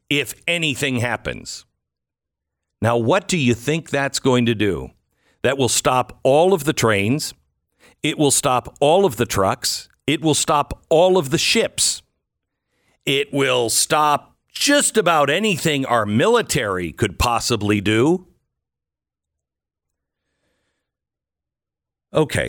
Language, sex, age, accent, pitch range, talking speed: English, male, 50-69, American, 105-150 Hz, 120 wpm